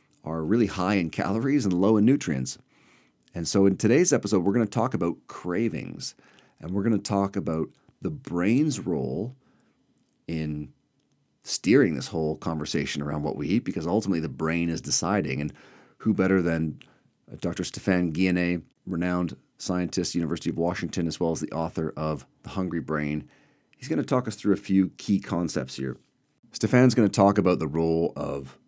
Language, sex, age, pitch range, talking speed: English, male, 40-59, 80-100 Hz, 175 wpm